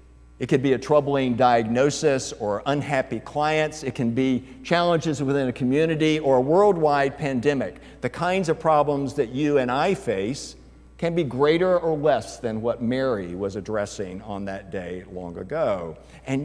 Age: 60-79